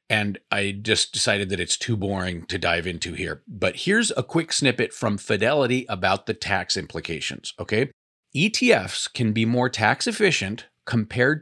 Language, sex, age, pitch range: English, male, 40-59, 105-140 Hz